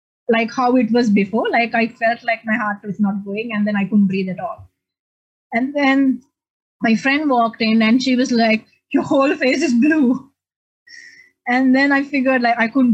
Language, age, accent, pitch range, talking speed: English, 20-39, Indian, 205-255 Hz, 200 wpm